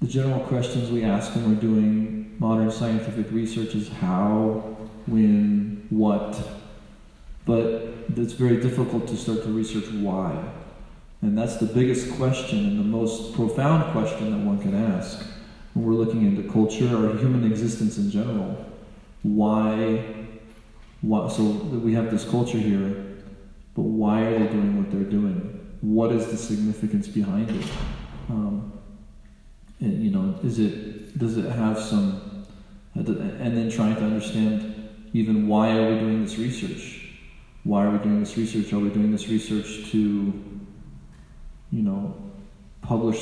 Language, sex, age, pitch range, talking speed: English, male, 40-59, 105-125 Hz, 145 wpm